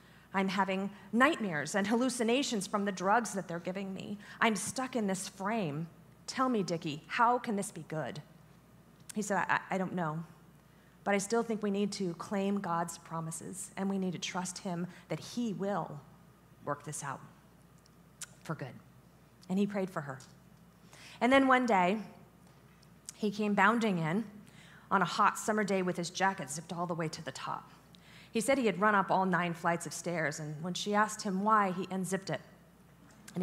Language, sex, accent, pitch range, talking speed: English, female, American, 170-215 Hz, 185 wpm